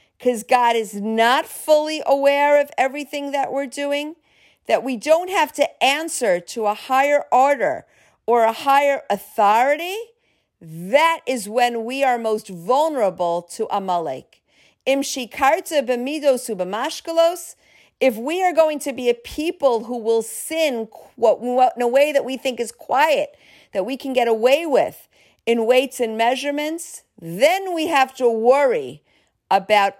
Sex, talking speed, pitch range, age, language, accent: female, 140 wpm, 215-290 Hz, 50-69, English, American